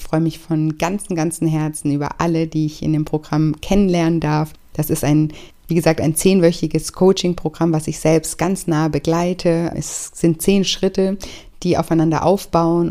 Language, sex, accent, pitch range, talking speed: German, female, German, 160-175 Hz, 175 wpm